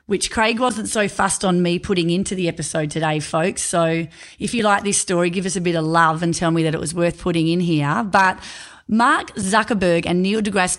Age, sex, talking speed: 30-49, female, 230 wpm